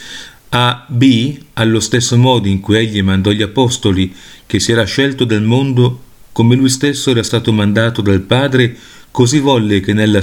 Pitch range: 105-130 Hz